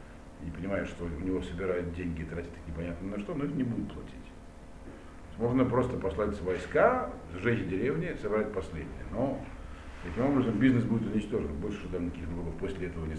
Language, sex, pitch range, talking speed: Russian, male, 75-100 Hz, 180 wpm